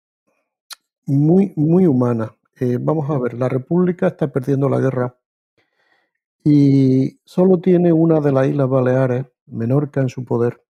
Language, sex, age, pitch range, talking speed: Spanish, male, 50-69, 130-175 Hz, 140 wpm